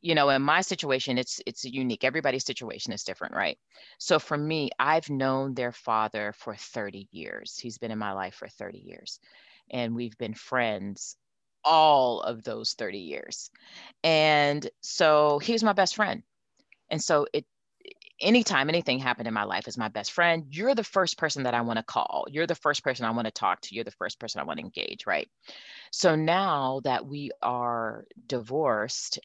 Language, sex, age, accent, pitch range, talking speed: English, female, 30-49, American, 120-160 Hz, 190 wpm